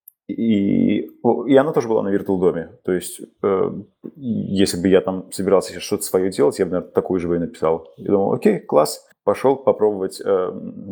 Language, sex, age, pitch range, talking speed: Russian, male, 30-49, 90-135 Hz, 180 wpm